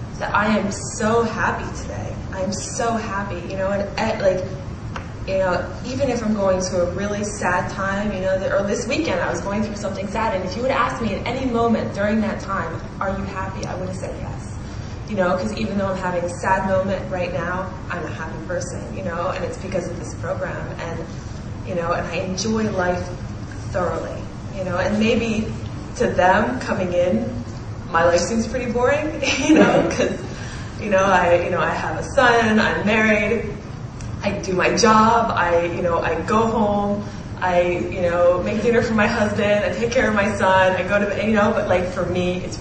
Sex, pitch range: female, 150-205 Hz